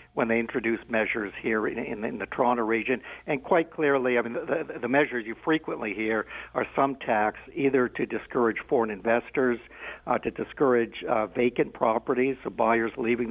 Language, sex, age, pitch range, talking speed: English, male, 60-79, 110-145 Hz, 180 wpm